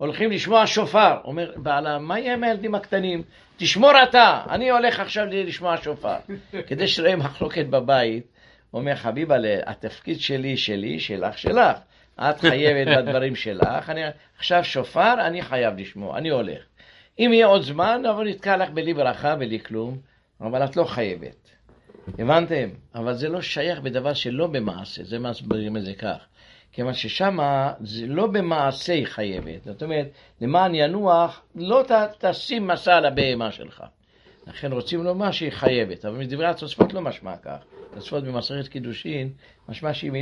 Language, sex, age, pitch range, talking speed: English, male, 60-79, 120-175 Hz, 150 wpm